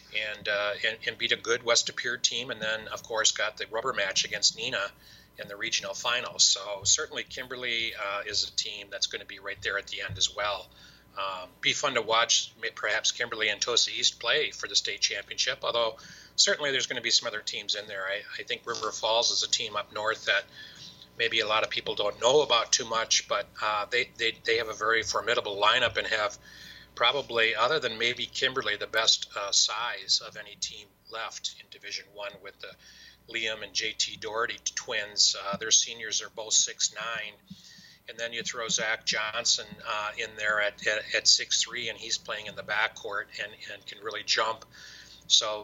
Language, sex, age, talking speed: English, male, 40-59, 205 wpm